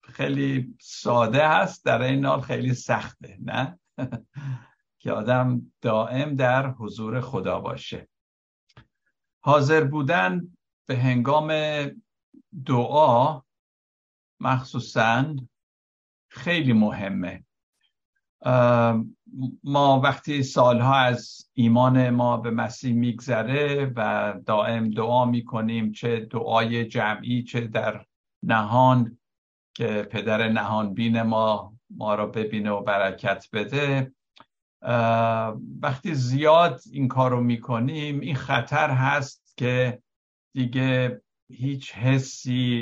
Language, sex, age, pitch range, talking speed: Persian, male, 60-79, 110-130 Hz, 90 wpm